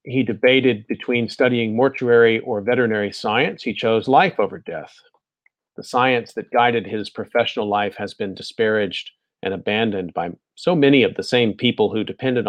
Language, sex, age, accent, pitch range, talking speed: English, male, 40-59, American, 105-125 Hz, 165 wpm